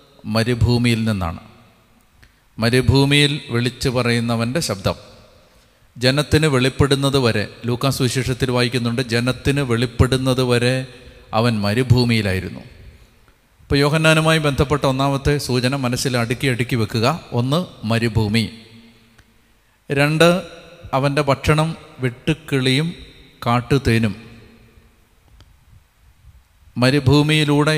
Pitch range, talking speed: 110-140 Hz, 75 wpm